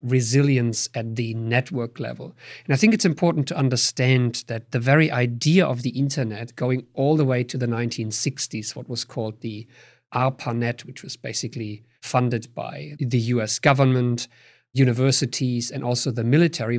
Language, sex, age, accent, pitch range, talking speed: English, male, 50-69, German, 120-140 Hz, 155 wpm